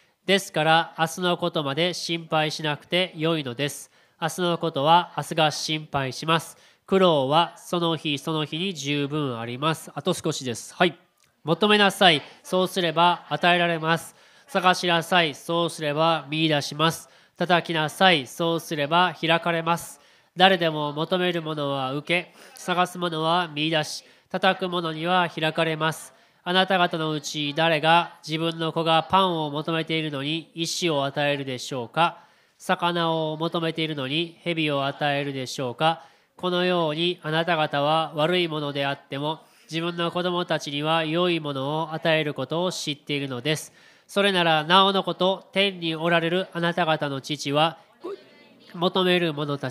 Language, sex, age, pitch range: Japanese, male, 20-39, 145-175 Hz